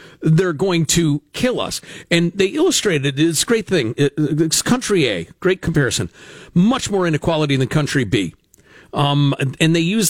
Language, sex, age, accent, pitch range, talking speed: English, male, 50-69, American, 145-190 Hz, 160 wpm